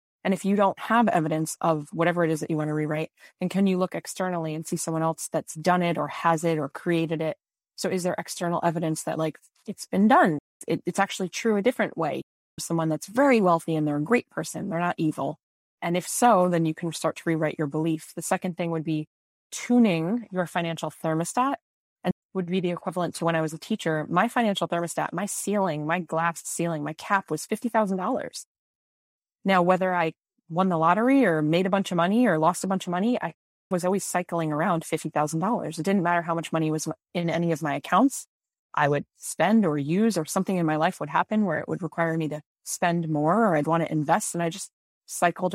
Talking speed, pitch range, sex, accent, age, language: 225 wpm, 160-190 Hz, female, American, 20-39, English